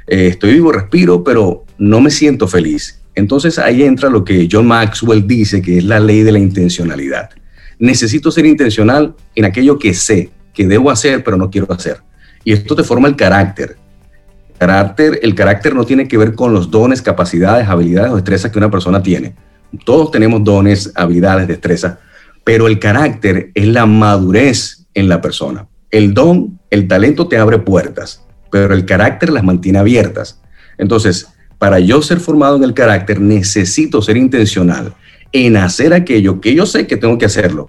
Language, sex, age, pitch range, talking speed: Spanish, male, 40-59, 90-115 Hz, 175 wpm